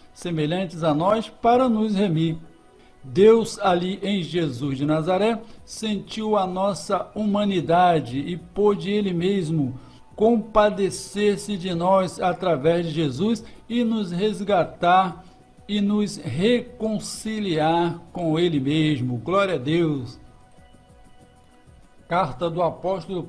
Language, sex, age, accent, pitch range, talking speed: Portuguese, male, 60-79, Brazilian, 165-215 Hz, 105 wpm